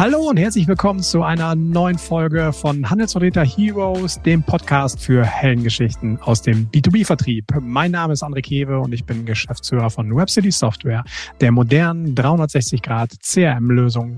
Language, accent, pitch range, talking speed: German, German, 120-170 Hz, 145 wpm